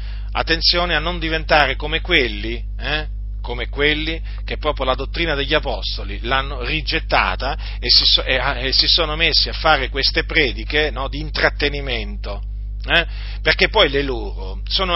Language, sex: Italian, male